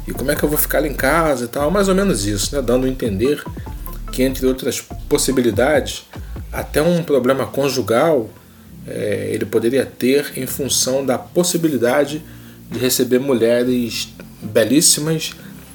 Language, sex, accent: Portuguese, male, Brazilian